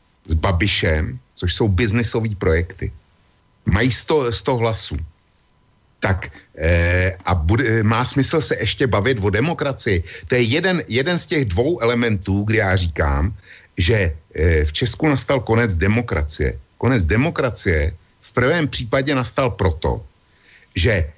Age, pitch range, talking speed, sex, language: 60-79, 90-130 Hz, 130 wpm, male, Slovak